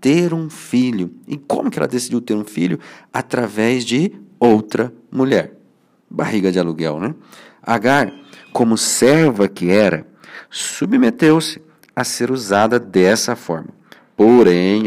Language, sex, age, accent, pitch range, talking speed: Portuguese, male, 50-69, Brazilian, 100-140 Hz, 125 wpm